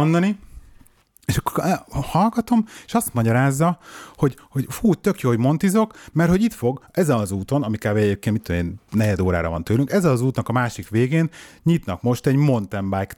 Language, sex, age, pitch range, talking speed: Hungarian, male, 30-49, 100-130 Hz, 185 wpm